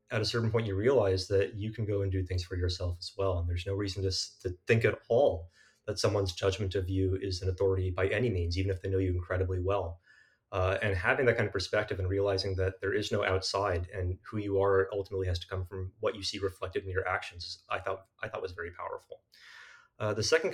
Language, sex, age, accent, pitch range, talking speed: English, male, 30-49, American, 95-100 Hz, 250 wpm